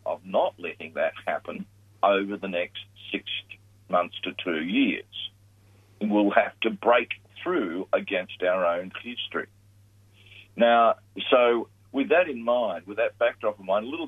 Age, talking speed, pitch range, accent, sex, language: 50-69, 150 wpm, 100-110 Hz, Australian, male, English